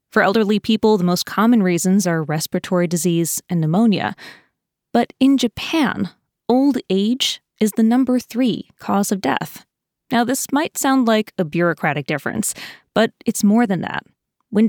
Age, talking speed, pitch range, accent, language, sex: 20-39, 155 wpm, 180-240 Hz, American, English, female